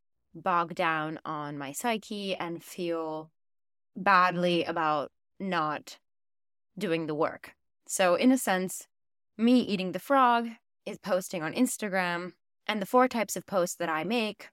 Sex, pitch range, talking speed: female, 165-195 Hz, 140 wpm